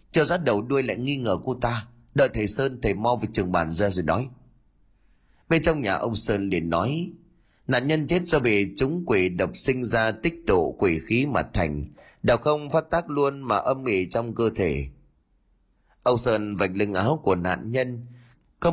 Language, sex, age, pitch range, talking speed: Vietnamese, male, 30-49, 95-140 Hz, 200 wpm